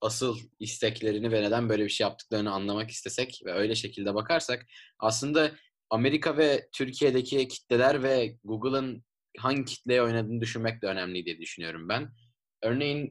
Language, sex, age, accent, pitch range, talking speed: Turkish, male, 20-39, native, 110-135 Hz, 140 wpm